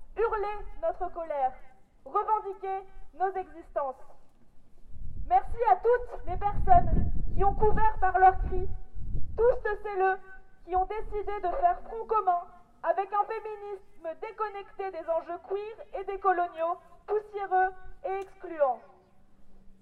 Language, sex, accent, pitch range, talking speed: French, female, French, 350-405 Hz, 125 wpm